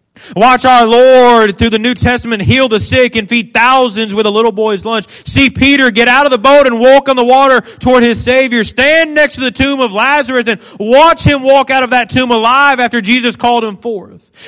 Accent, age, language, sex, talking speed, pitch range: American, 30-49, English, male, 225 wpm, 230-280 Hz